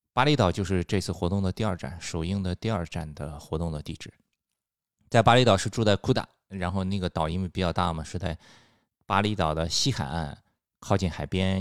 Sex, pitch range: male, 80-105 Hz